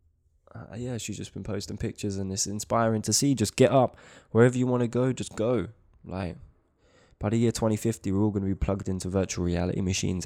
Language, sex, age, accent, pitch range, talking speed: English, male, 20-39, British, 90-115 Hz, 215 wpm